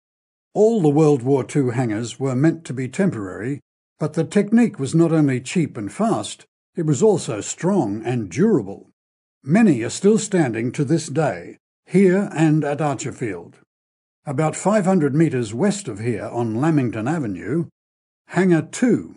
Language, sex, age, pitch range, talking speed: English, male, 60-79, 125-165 Hz, 150 wpm